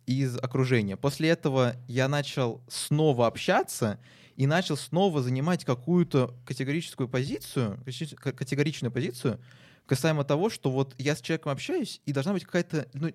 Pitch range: 125-155 Hz